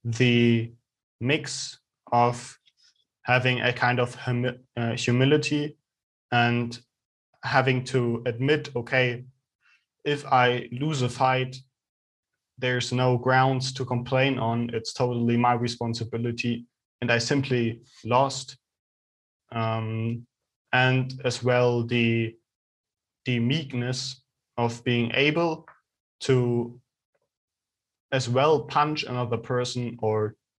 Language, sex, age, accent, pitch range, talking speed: English, male, 20-39, German, 115-130 Hz, 100 wpm